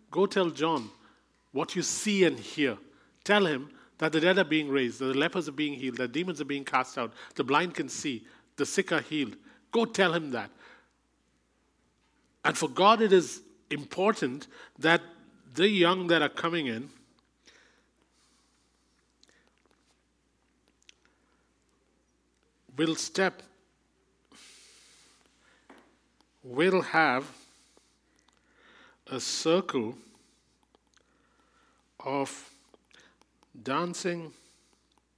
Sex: male